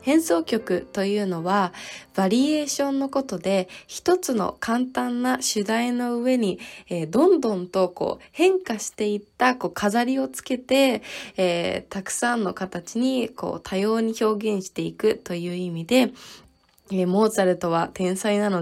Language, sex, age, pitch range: Japanese, female, 20-39, 185-250 Hz